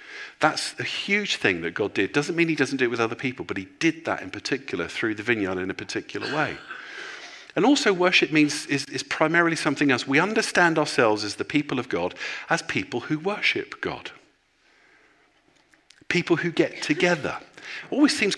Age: 50-69